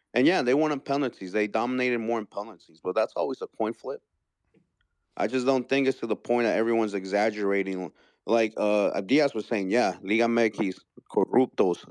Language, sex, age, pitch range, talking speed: English, male, 30-49, 105-125 Hz, 185 wpm